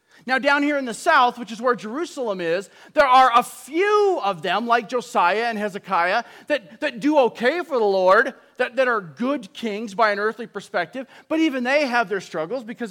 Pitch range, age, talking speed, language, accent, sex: 230-290 Hz, 40-59, 205 wpm, English, American, male